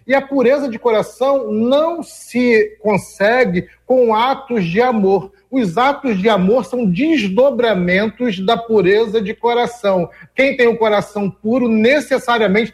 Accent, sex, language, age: Brazilian, male, Portuguese, 40-59